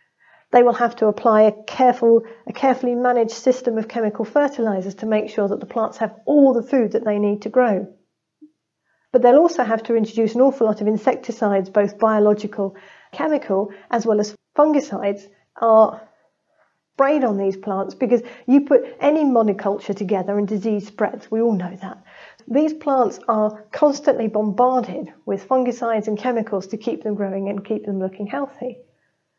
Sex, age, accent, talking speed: female, 40-59, British, 165 wpm